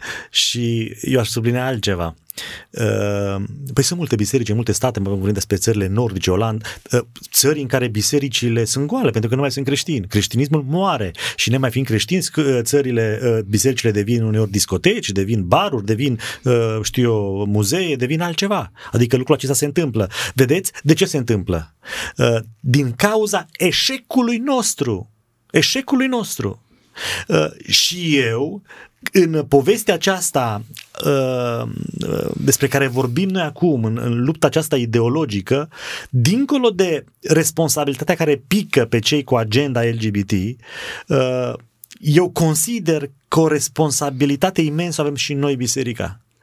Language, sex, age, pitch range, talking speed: Romanian, male, 30-49, 115-155 Hz, 135 wpm